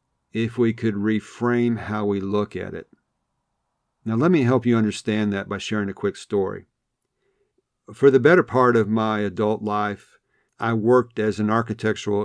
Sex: male